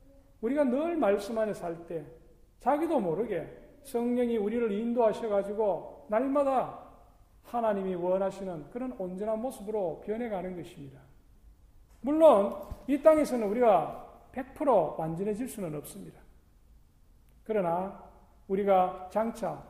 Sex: male